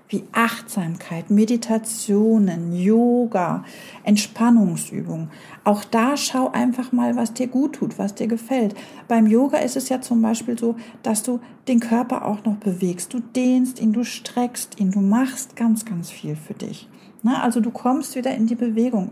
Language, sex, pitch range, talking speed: German, female, 200-245 Hz, 165 wpm